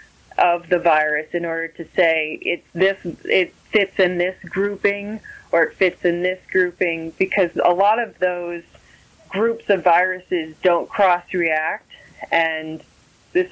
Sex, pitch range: female, 160-195 Hz